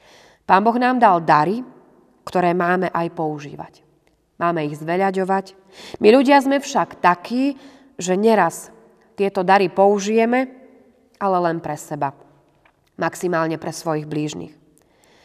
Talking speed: 120 wpm